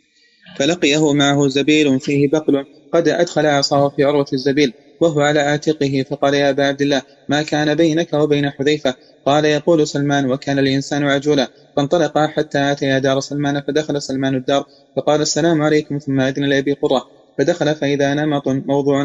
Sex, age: male, 20-39